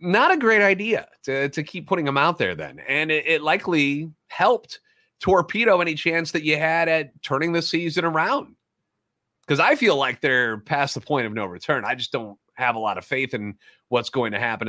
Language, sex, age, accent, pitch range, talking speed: English, male, 30-49, American, 120-165 Hz, 215 wpm